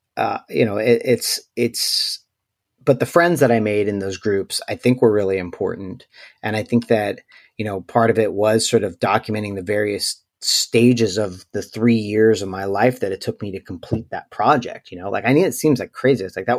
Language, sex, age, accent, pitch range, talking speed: English, male, 30-49, American, 105-130 Hz, 225 wpm